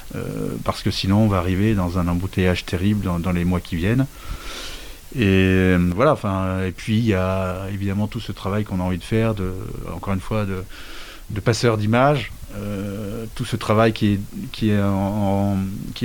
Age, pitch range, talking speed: 30-49, 95-115 Hz, 165 wpm